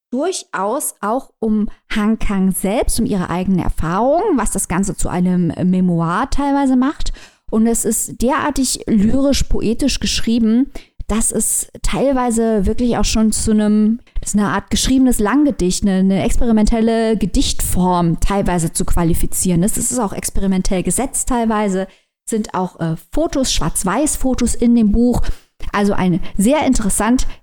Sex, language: female, German